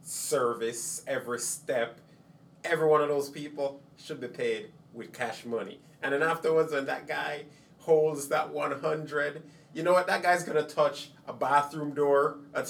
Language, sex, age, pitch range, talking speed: English, male, 30-49, 145-175 Hz, 165 wpm